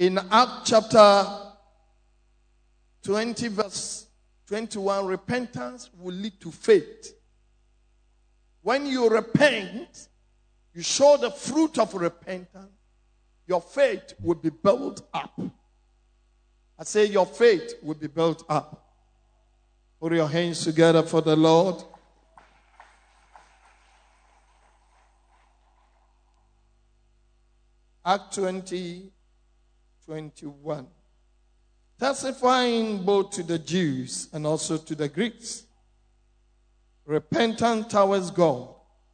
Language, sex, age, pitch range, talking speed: English, male, 50-69, 115-190 Hz, 85 wpm